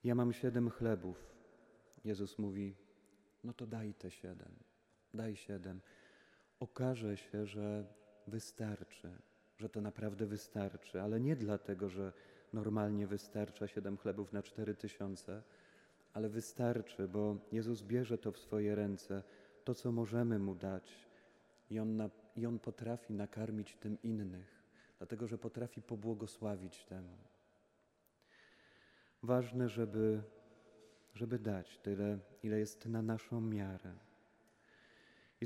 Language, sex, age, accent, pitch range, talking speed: Polish, male, 30-49, native, 105-115 Hz, 115 wpm